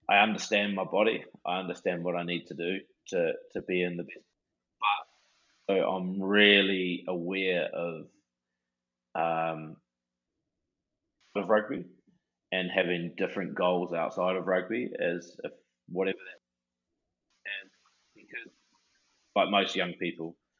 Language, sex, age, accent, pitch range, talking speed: English, male, 20-39, Australian, 85-105 Hz, 130 wpm